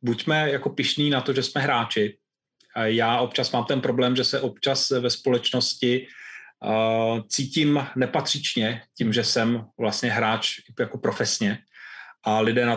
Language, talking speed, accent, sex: Czech, 140 wpm, native, male